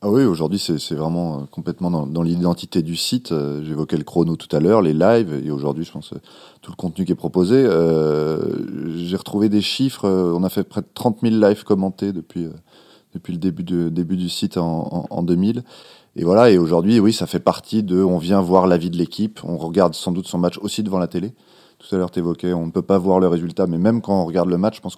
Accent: French